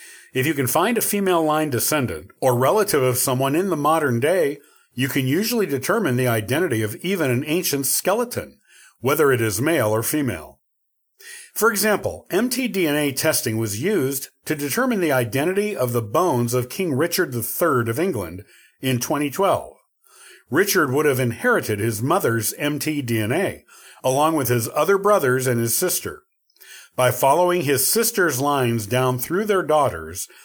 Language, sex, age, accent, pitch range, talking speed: English, male, 50-69, American, 125-180 Hz, 155 wpm